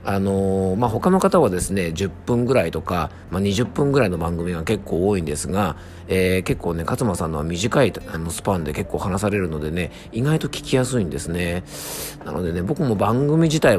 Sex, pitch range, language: male, 85-110 Hz, Japanese